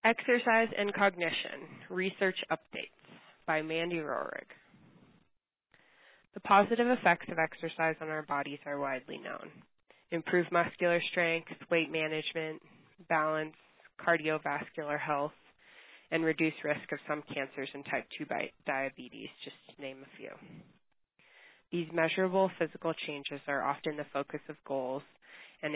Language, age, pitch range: English, 20-39, 150-170 Hz